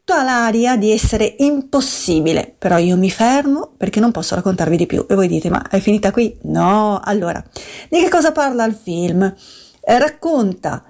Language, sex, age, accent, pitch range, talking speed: Italian, female, 50-69, native, 185-240 Hz, 165 wpm